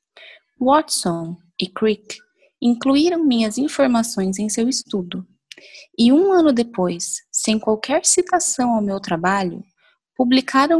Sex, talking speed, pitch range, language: female, 110 wpm, 195-265 Hz, Portuguese